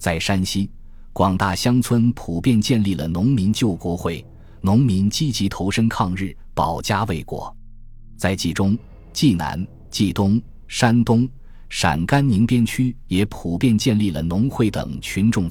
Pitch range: 90-115 Hz